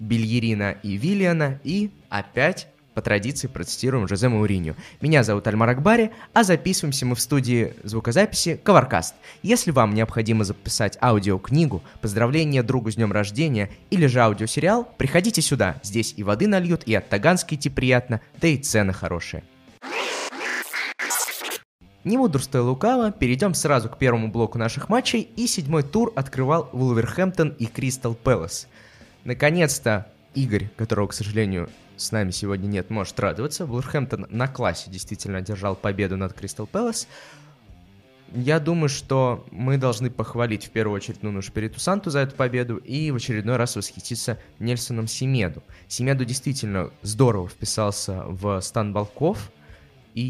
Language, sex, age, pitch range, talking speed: Russian, male, 20-39, 105-140 Hz, 140 wpm